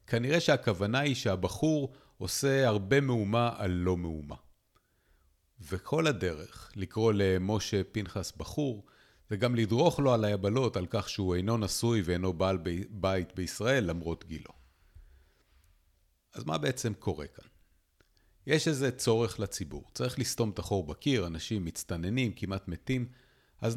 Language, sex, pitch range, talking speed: Hebrew, male, 95-130 Hz, 130 wpm